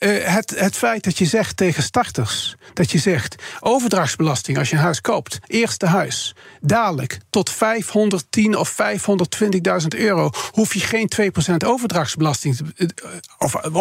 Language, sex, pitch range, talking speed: Dutch, male, 170-230 Hz, 130 wpm